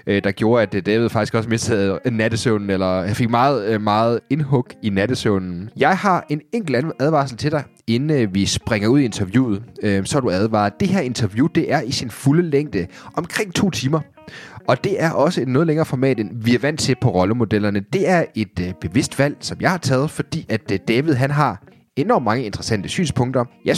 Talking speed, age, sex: 195 wpm, 30-49, male